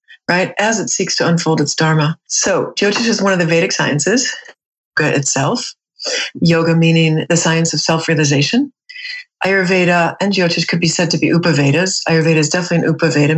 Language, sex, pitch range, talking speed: English, female, 165-205 Hz, 170 wpm